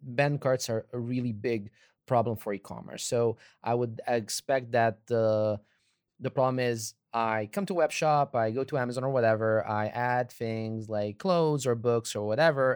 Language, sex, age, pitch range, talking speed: Croatian, male, 20-39, 115-140 Hz, 185 wpm